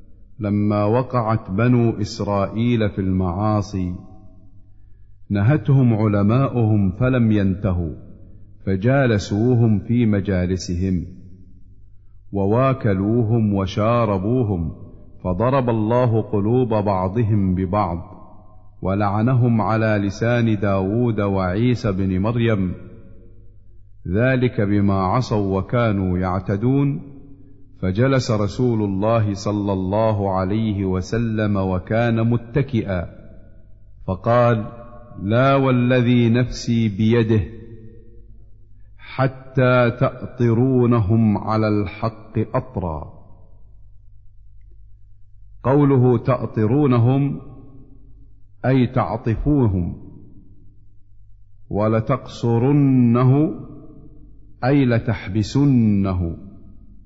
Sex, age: male, 50-69